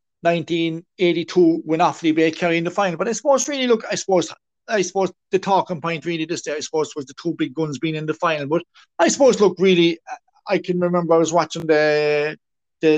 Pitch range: 165-200 Hz